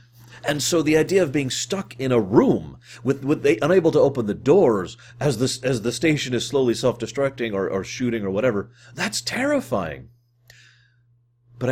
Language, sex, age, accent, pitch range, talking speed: English, male, 30-49, American, 105-130 Hz, 180 wpm